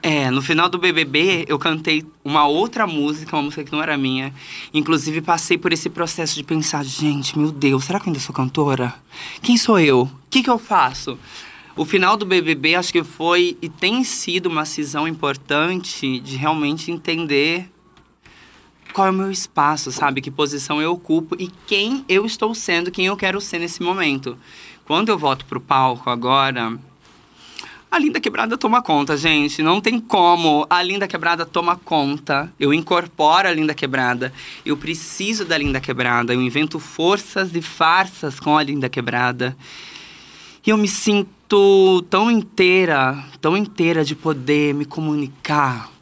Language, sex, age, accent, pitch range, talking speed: Portuguese, male, 20-39, Brazilian, 140-180 Hz, 165 wpm